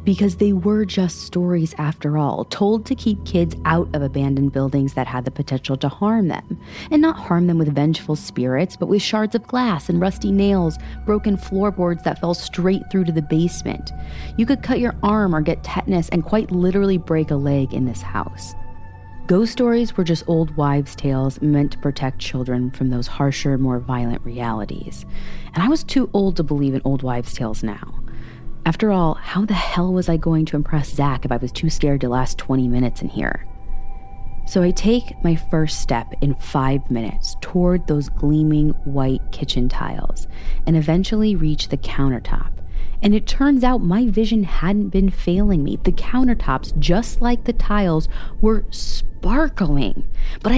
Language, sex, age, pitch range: English, female, 30-49, 135-200 Hz